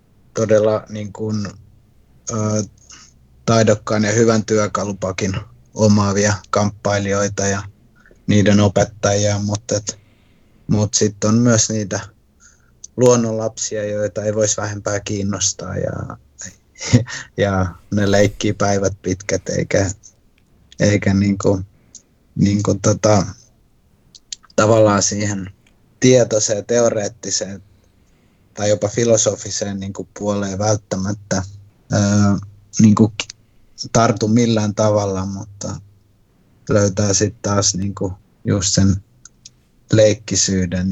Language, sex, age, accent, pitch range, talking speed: Finnish, male, 30-49, native, 100-110 Hz, 90 wpm